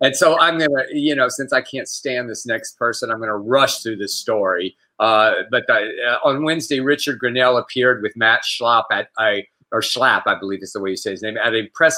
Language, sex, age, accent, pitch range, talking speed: English, male, 50-69, American, 145-200 Hz, 240 wpm